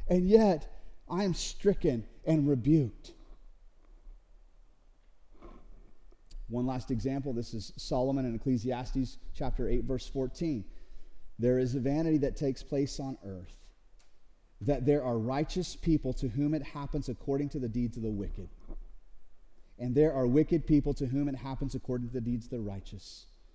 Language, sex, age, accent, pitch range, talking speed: English, male, 30-49, American, 110-140 Hz, 155 wpm